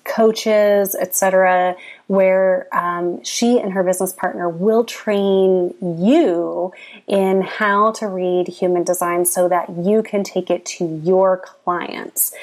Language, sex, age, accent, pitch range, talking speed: English, female, 30-49, American, 175-215 Hz, 130 wpm